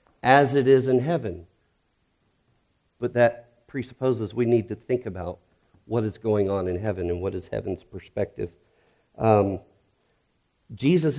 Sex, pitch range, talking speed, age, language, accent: male, 100-130 Hz, 140 wpm, 50-69, English, American